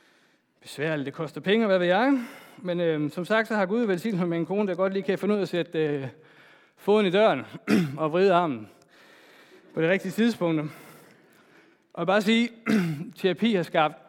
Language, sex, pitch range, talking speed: Danish, male, 140-190 Hz, 195 wpm